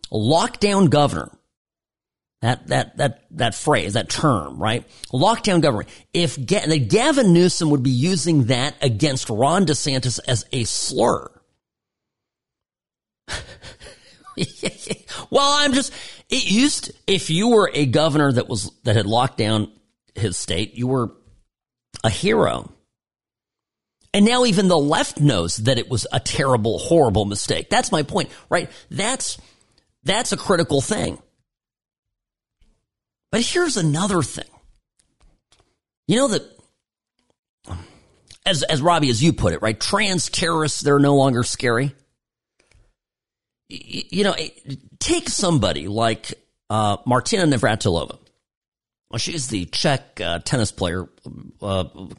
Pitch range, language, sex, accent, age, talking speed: 105-160 Hz, English, male, American, 40-59, 125 wpm